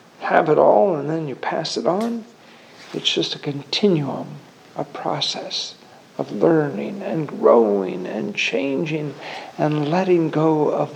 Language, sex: English, male